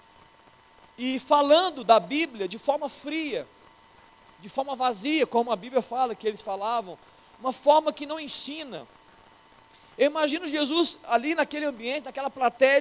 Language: Portuguese